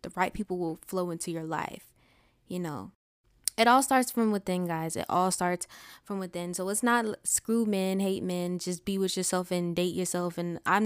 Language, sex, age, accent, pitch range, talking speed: English, female, 10-29, American, 180-225 Hz, 205 wpm